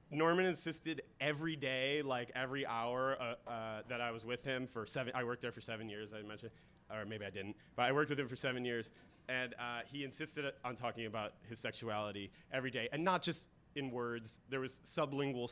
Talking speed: 215 wpm